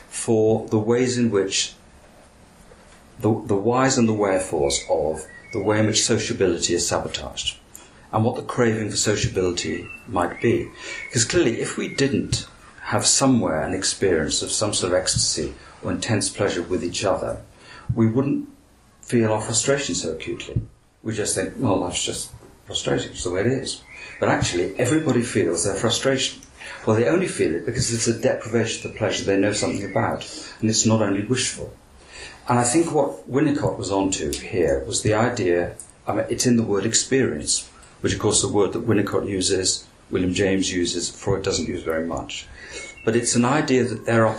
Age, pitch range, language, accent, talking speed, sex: 50-69, 100-120 Hz, English, British, 180 wpm, male